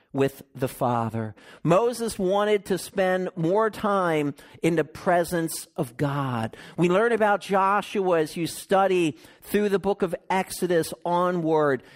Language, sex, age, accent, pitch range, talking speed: English, male, 50-69, American, 145-200 Hz, 135 wpm